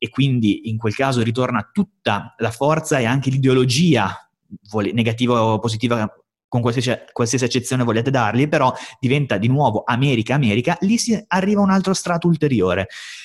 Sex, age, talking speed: male, 30-49, 155 wpm